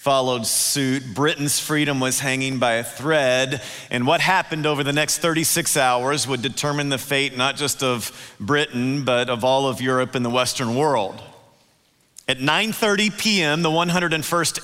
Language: English